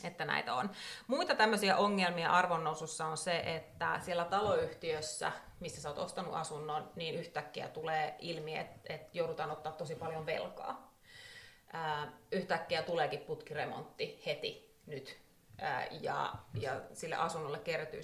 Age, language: 30-49, Finnish